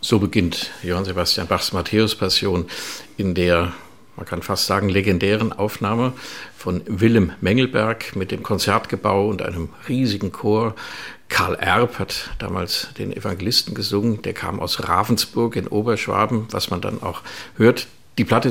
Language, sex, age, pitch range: German, male, 50-69, 95-115 Hz